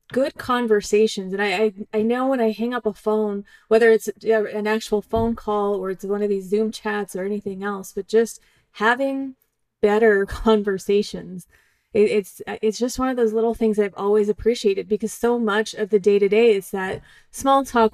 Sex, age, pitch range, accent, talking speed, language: female, 30-49, 200-230 Hz, American, 185 wpm, English